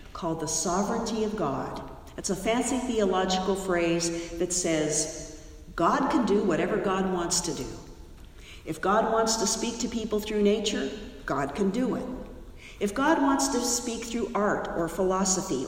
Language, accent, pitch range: English, American, 165-220 Hz